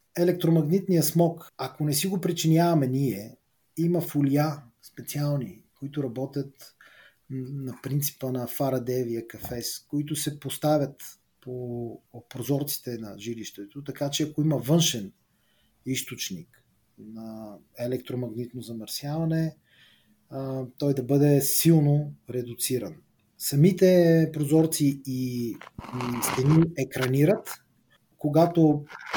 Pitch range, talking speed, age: 125-155 Hz, 95 wpm, 30-49